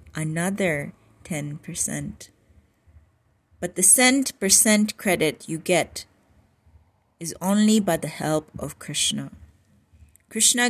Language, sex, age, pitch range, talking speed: English, female, 30-49, 145-200 Hz, 95 wpm